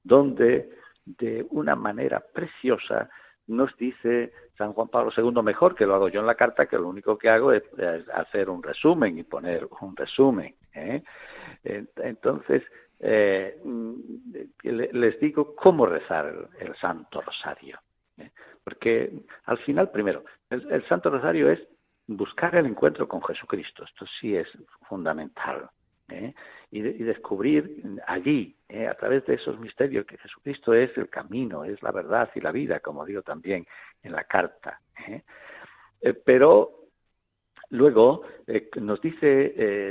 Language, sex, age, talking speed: Spanish, male, 60-79, 145 wpm